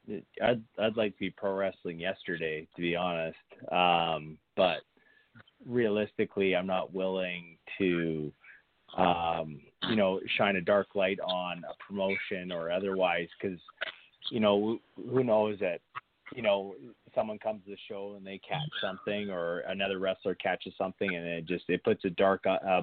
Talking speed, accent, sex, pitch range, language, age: 165 wpm, American, male, 90-100 Hz, English, 30-49